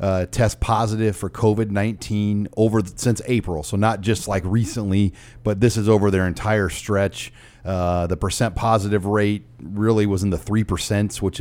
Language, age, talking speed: English, 40-59, 180 wpm